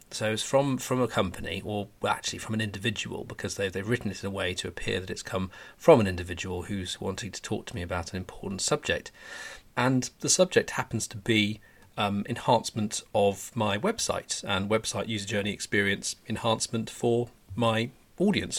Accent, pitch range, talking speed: British, 100-120 Hz, 185 wpm